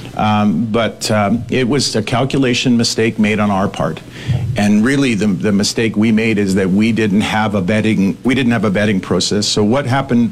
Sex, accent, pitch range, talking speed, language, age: male, American, 100-115 Hz, 205 wpm, English, 50-69